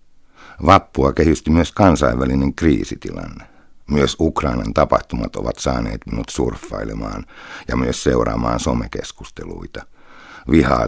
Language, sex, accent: Finnish, male, native